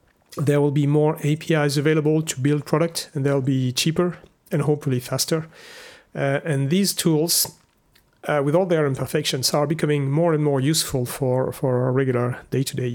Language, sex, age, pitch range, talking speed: English, male, 40-59, 140-165 Hz, 165 wpm